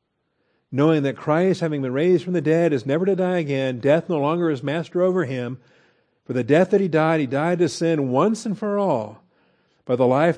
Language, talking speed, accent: English, 220 wpm, American